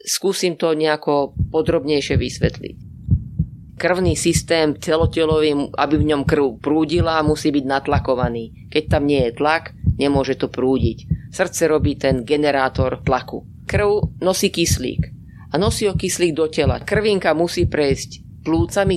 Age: 30-49